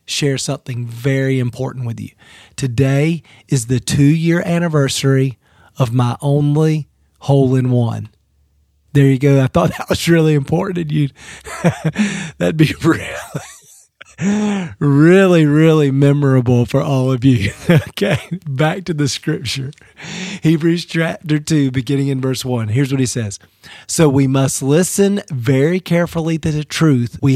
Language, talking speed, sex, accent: English, 135 wpm, male, American